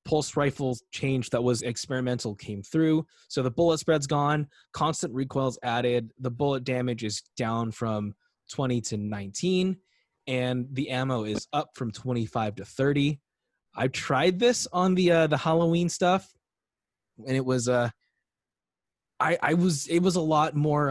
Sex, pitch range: male, 115-150 Hz